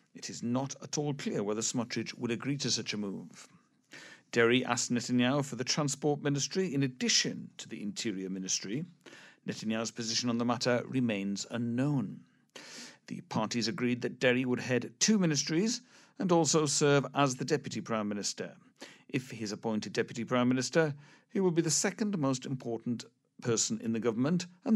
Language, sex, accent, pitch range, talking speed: English, male, British, 115-150 Hz, 170 wpm